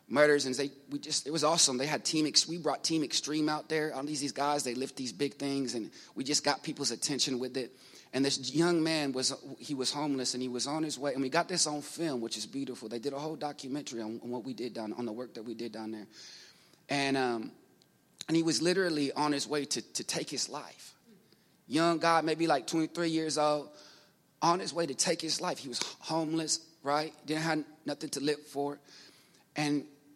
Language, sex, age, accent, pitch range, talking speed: English, male, 30-49, American, 135-160 Hz, 235 wpm